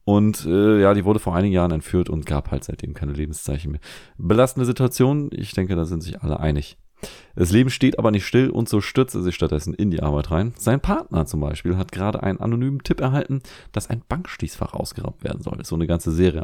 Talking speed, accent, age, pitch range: 225 wpm, German, 30-49, 85-135 Hz